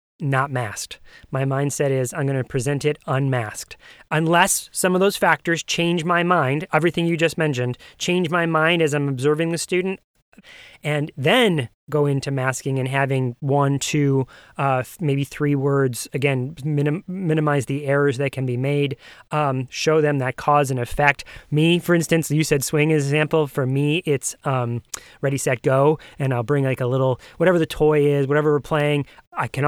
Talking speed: 185 wpm